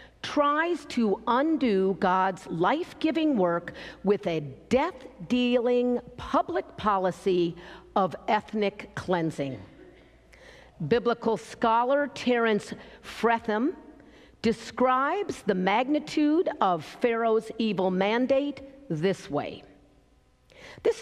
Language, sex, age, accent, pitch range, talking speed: English, female, 50-69, American, 185-280 Hz, 80 wpm